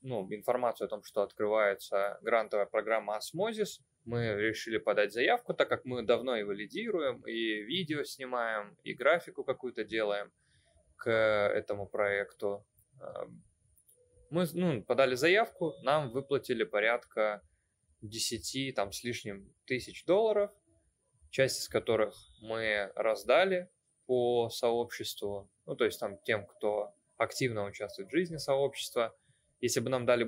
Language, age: Russian, 20-39